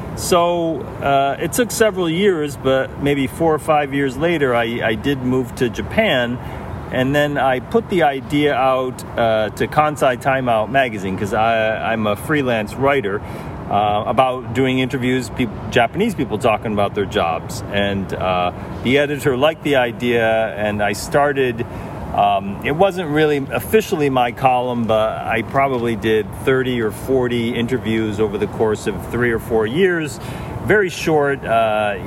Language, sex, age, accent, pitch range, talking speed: English, male, 40-59, American, 110-140 Hz, 155 wpm